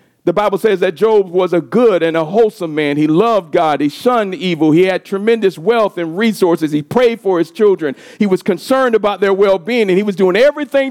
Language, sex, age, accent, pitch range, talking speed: English, male, 50-69, American, 205-265 Hz, 220 wpm